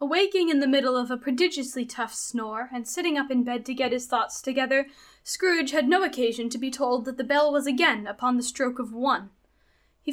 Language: English